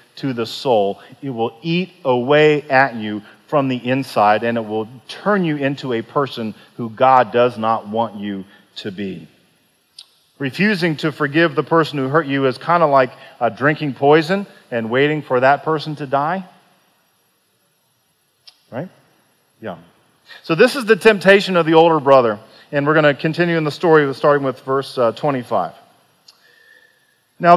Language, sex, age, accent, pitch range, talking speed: English, male, 40-59, American, 125-170 Hz, 160 wpm